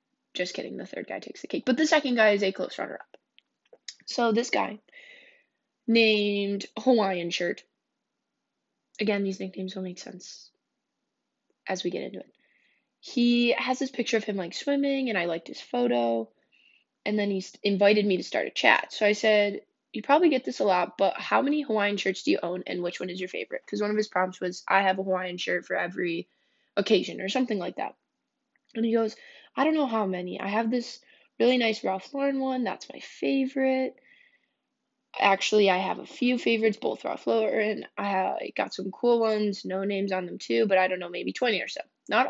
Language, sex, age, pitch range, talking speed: English, female, 10-29, 190-255 Hz, 205 wpm